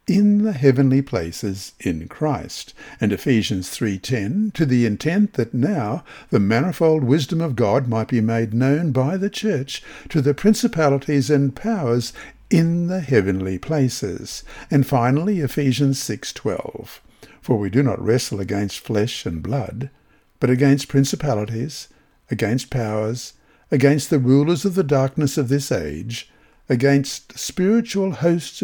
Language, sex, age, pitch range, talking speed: English, male, 60-79, 120-165 Hz, 135 wpm